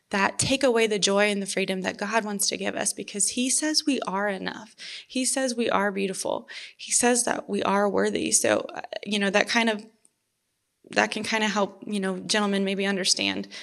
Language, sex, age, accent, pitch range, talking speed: English, female, 20-39, American, 190-235 Hz, 205 wpm